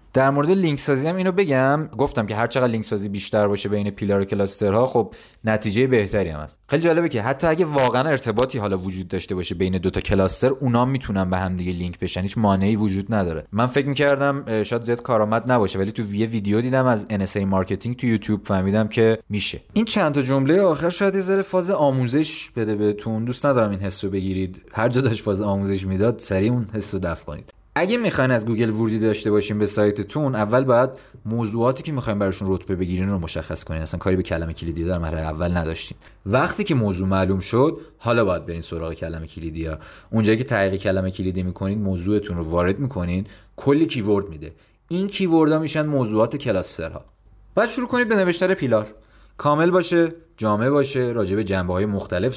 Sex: male